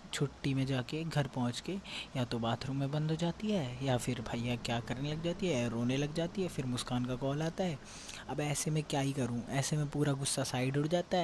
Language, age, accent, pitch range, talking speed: Hindi, 20-39, native, 115-140 Hz, 240 wpm